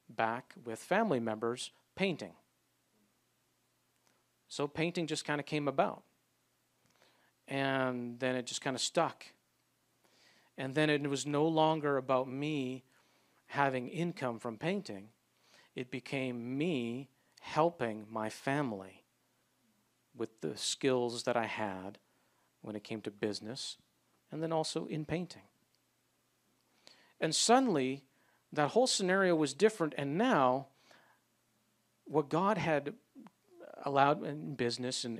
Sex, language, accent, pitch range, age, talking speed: male, English, American, 120-150 Hz, 50-69, 120 wpm